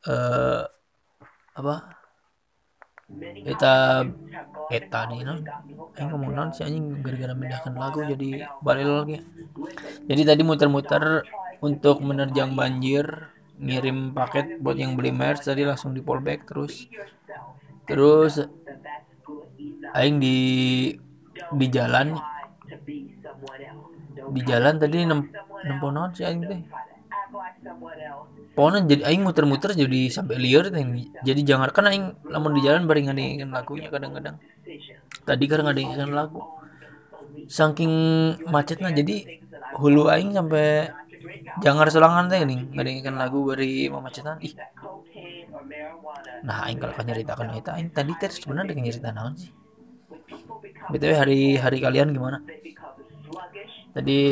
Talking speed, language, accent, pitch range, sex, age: 105 wpm, Indonesian, native, 130-155 Hz, male, 20-39